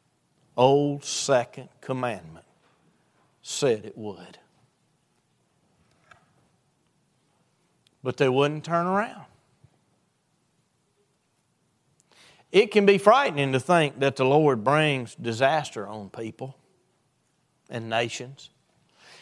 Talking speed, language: 80 wpm, English